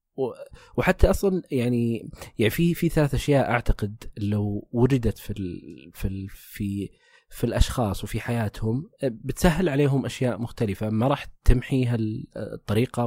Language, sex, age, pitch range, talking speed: Arabic, male, 20-39, 110-135 Hz, 125 wpm